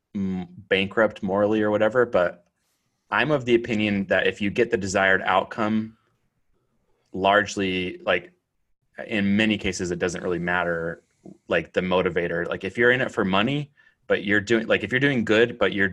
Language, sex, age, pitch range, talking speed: English, male, 30-49, 90-115 Hz, 170 wpm